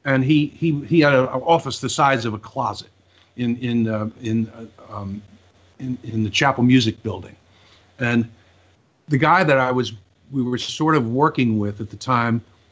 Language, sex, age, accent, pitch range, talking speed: English, male, 50-69, American, 110-140 Hz, 185 wpm